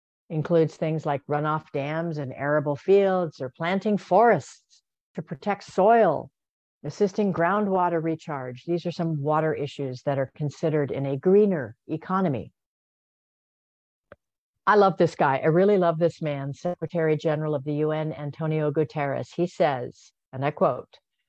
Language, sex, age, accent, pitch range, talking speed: English, female, 50-69, American, 145-175 Hz, 140 wpm